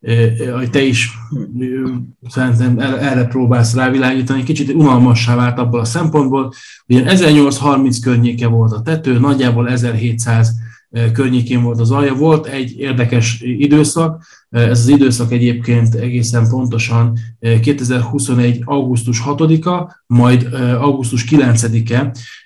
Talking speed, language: 105 wpm, Hungarian